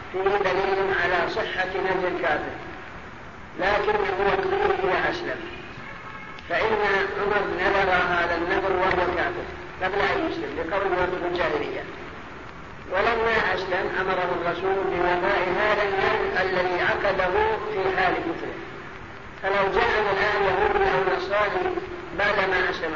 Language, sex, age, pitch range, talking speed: Arabic, female, 50-69, 185-215 Hz, 105 wpm